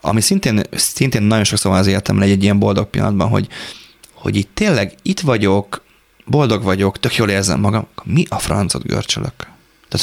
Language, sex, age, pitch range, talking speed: Hungarian, male, 30-49, 100-120 Hz, 175 wpm